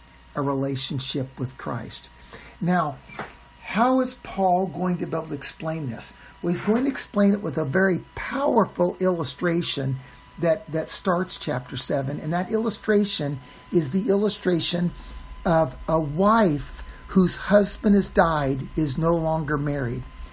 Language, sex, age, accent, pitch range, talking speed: English, male, 60-79, American, 145-195 Hz, 140 wpm